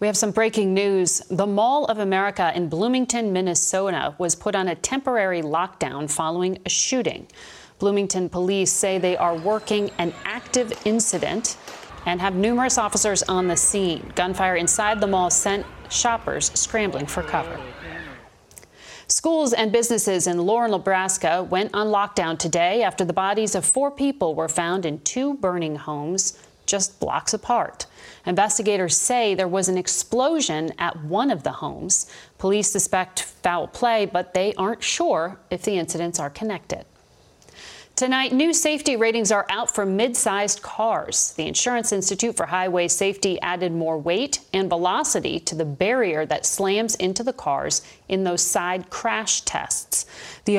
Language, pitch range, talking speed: English, 180-220 Hz, 155 wpm